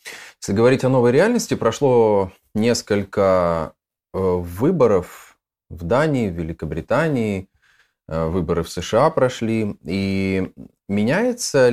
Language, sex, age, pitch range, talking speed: Russian, male, 30-49, 90-115 Hz, 90 wpm